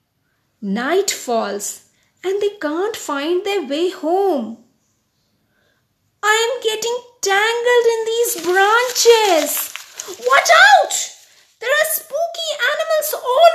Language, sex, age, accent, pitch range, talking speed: English, female, 30-49, Indian, 225-350 Hz, 100 wpm